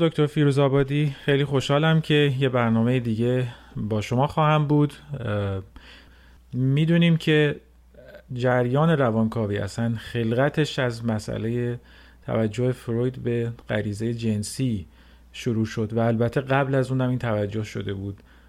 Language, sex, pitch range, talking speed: Persian, male, 105-125 Hz, 115 wpm